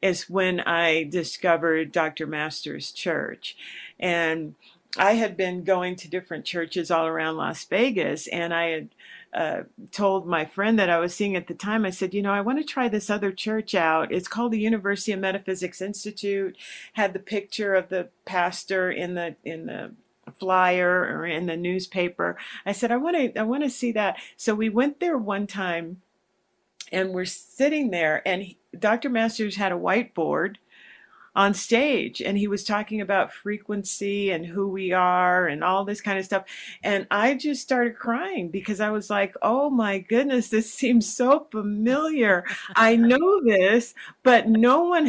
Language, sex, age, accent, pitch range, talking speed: English, female, 50-69, American, 180-230 Hz, 180 wpm